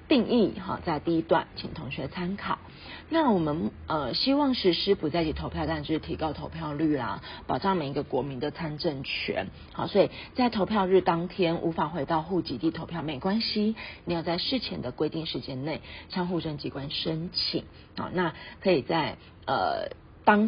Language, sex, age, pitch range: Chinese, female, 30-49, 145-195 Hz